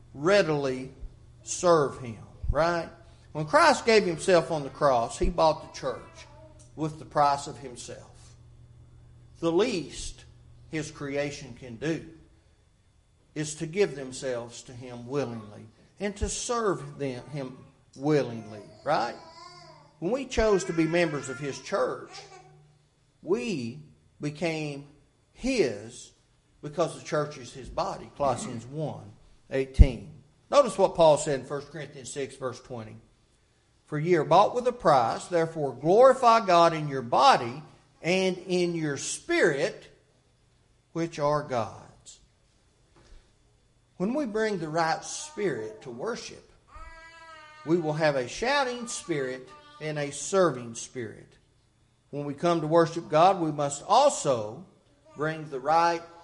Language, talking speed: English, 130 wpm